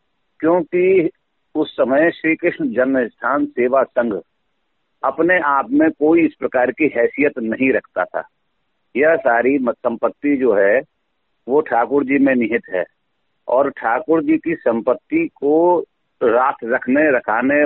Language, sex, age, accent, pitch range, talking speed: Hindi, male, 50-69, native, 125-170 Hz, 135 wpm